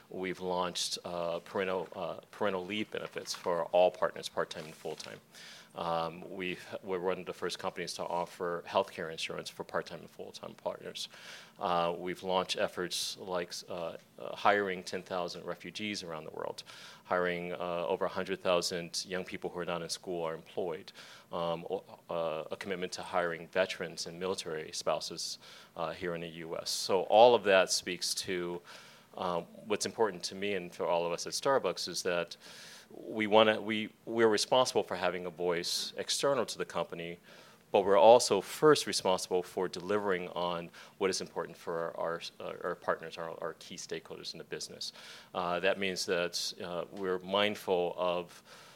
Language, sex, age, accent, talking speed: English, male, 30-49, American, 175 wpm